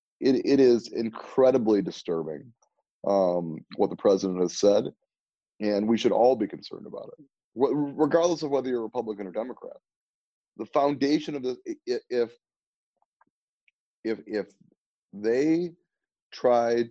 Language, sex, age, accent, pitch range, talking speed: English, male, 30-49, American, 90-135 Hz, 130 wpm